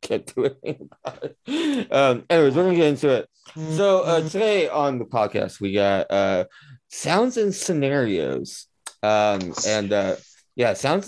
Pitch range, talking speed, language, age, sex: 100-155 Hz, 145 wpm, English, 20-39, male